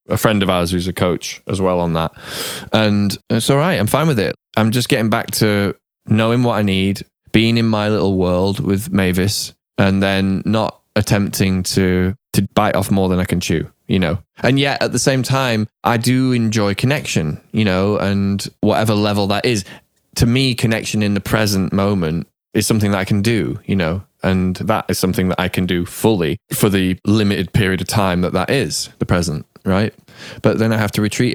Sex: male